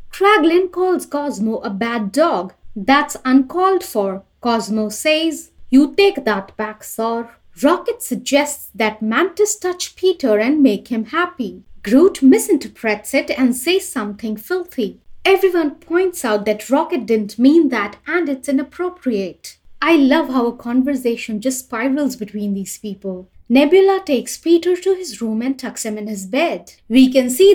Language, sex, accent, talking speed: English, female, Indian, 150 wpm